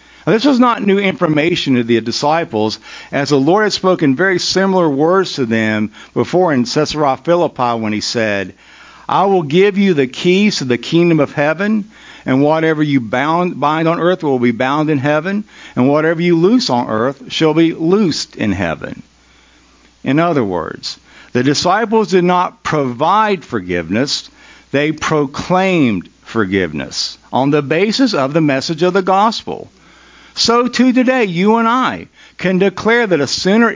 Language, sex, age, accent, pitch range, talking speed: English, male, 50-69, American, 145-210 Hz, 160 wpm